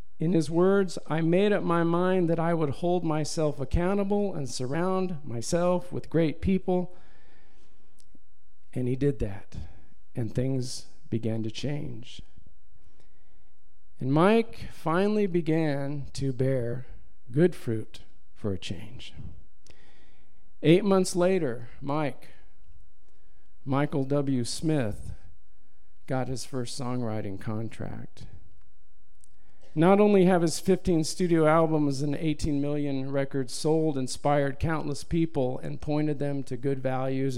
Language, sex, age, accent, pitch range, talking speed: English, male, 50-69, American, 115-155 Hz, 115 wpm